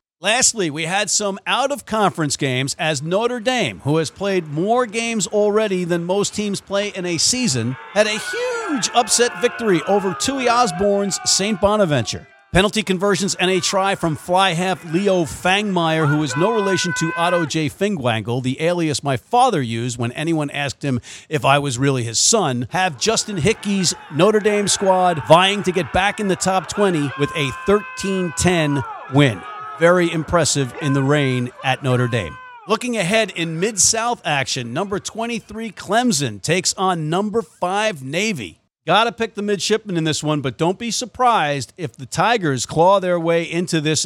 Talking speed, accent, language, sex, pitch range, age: 165 wpm, American, English, male, 145-205 Hz, 50-69